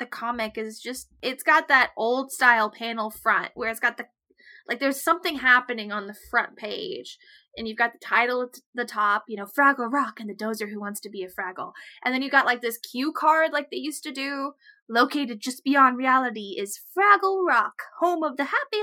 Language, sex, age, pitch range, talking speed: English, female, 10-29, 215-280 Hz, 215 wpm